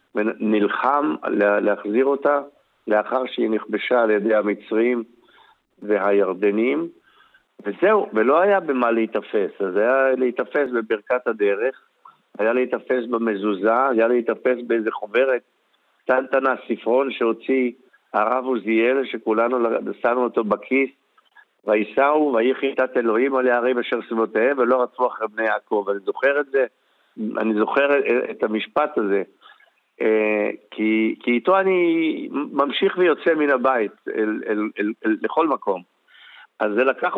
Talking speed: 125 wpm